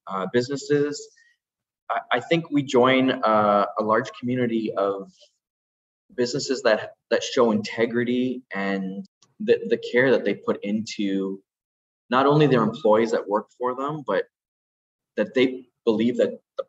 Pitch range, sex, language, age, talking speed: 95-130 Hz, male, English, 20-39, 140 wpm